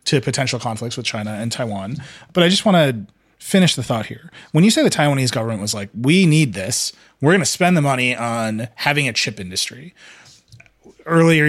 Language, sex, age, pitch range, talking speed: English, male, 30-49, 115-145 Hz, 200 wpm